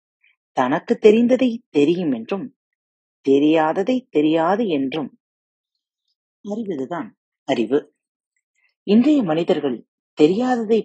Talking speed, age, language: 55 wpm, 30-49, Tamil